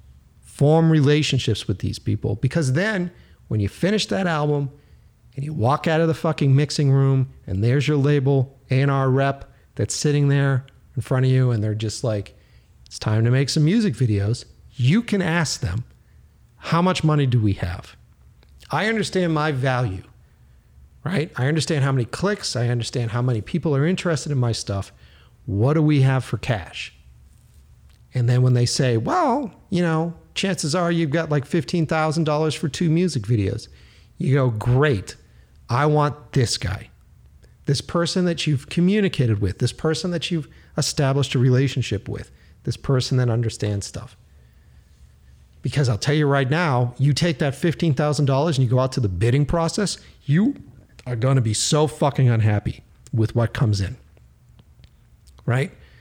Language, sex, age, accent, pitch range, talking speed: English, male, 40-59, American, 110-155 Hz, 165 wpm